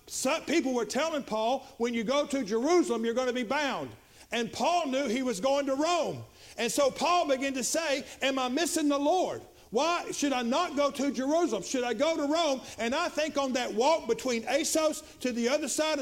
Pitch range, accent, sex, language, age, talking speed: 245-290 Hz, American, male, English, 50-69, 215 wpm